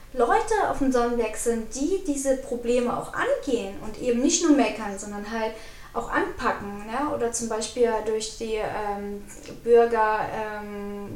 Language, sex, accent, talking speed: German, female, German, 150 wpm